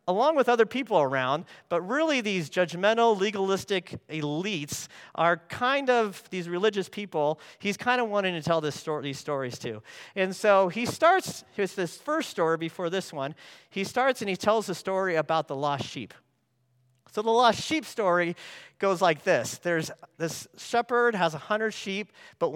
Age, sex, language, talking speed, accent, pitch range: 40-59, male, English, 170 wpm, American, 145-215 Hz